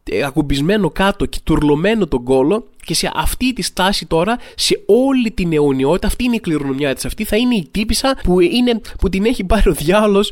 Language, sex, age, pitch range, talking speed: Greek, male, 20-39, 145-195 Hz, 190 wpm